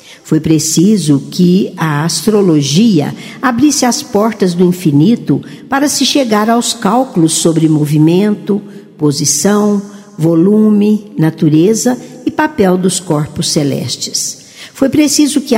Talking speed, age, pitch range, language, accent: 110 wpm, 60-79, 160-225 Hz, Portuguese, Brazilian